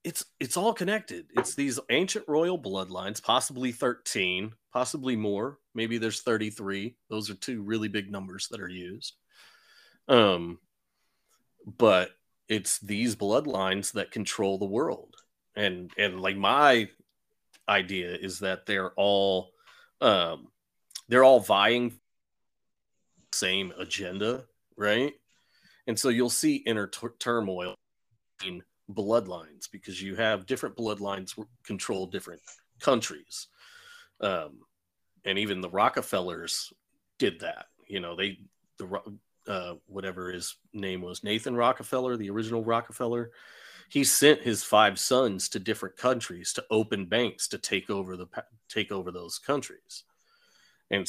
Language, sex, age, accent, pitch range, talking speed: English, male, 30-49, American, 95-120 Hz, 130 wpm